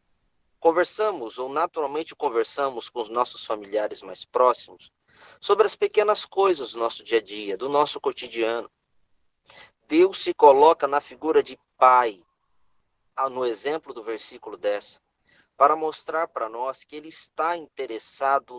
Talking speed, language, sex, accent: 135 wpm, Portuguese, male, Brazilian